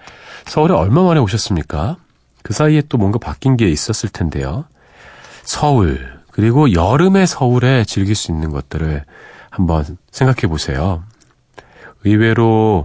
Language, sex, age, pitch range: Korean, male, 40-59, 75-115 Hz